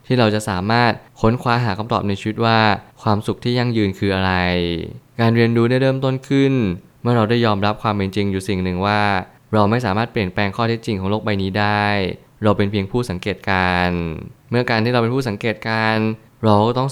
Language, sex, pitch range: Thai, male, 100-120 Hz